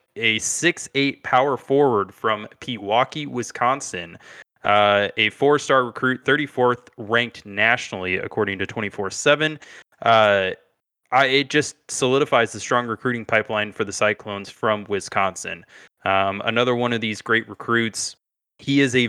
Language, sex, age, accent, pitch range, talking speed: English, male, 20-39, American, 105-125 Hz, 140 wpm